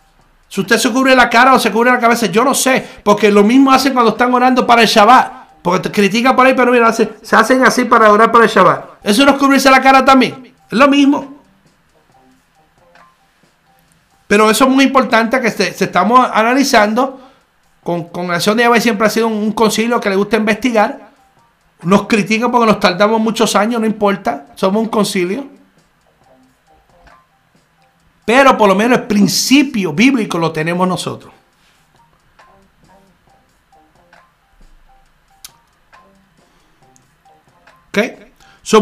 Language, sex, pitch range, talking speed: Spanish, male, 200-255 Hz, 150 wpm